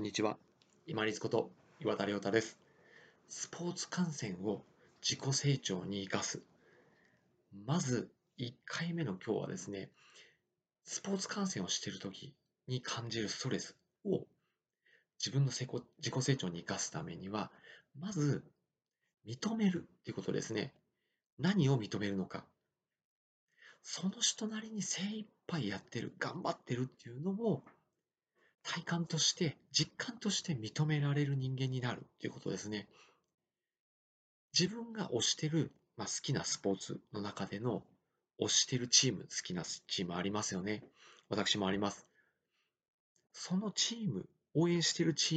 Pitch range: 105-175 Hz